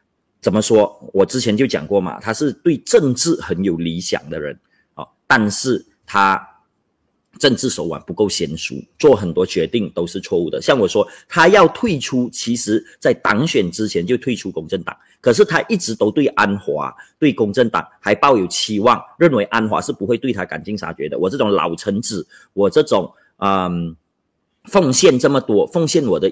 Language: Chinese